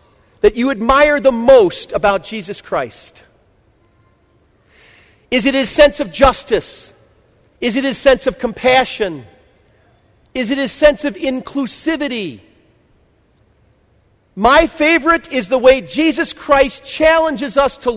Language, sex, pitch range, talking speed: English, male, 160-270 Hz, 120 wpm